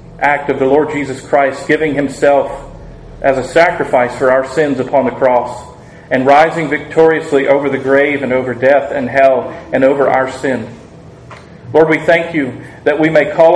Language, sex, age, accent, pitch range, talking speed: English, male, 40-59, American, 135-155 Hz, 175 wpm